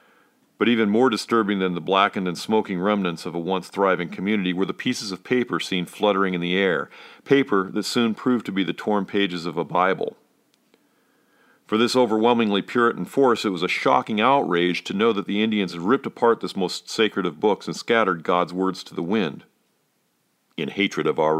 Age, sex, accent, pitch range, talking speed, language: 40-59, male, American, 90-105 Hz, 195 wpm, English